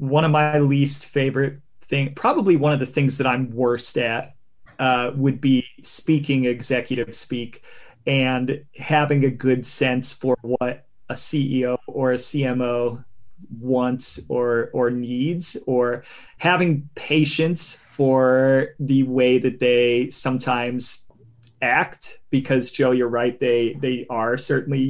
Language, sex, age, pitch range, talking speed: English, male, 30-49, 125-145 Hz, 135 wpm